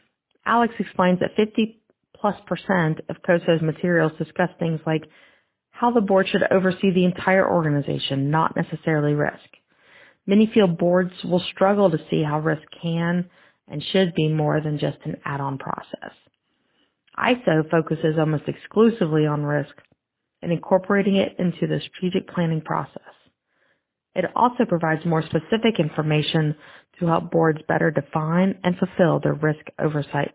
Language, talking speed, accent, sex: English, 140 wpm, American, female